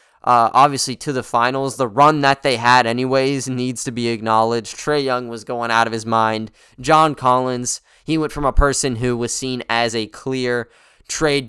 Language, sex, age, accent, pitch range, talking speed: English, male, 20-39, American, 120-140 Hz, 190 wpm